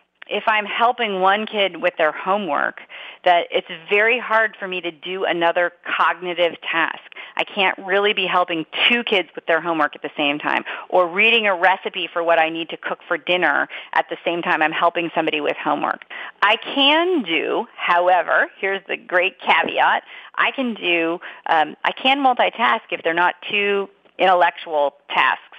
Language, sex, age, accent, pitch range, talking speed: English, female, 40-59, American, 160-200 Hz, 175 wpm